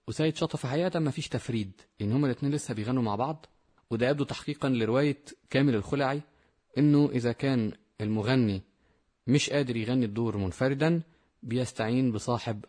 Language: English